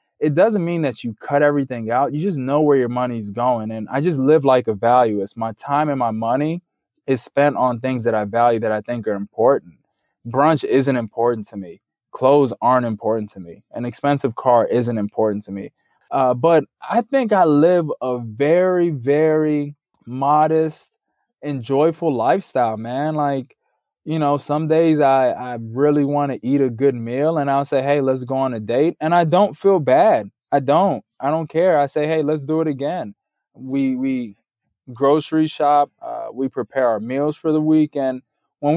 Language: English